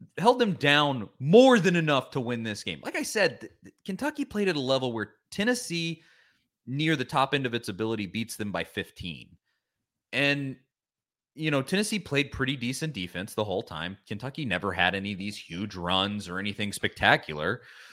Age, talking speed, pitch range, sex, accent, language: 30-49, 175 wpm, 95-145 Hz, male, American, English